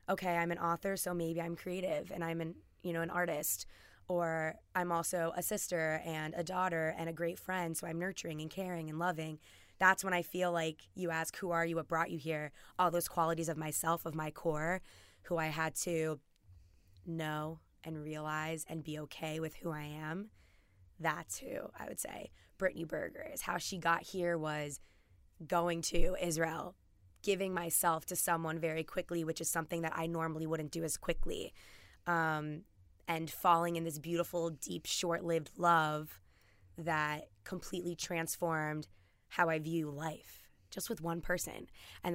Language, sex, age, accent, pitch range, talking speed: English, female, 20-39, American, 155-175 Hz, 170 wpm